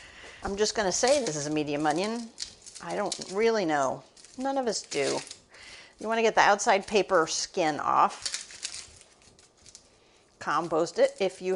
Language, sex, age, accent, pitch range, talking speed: English, female, 50-69, American, 170-220 Hz, 150 wpm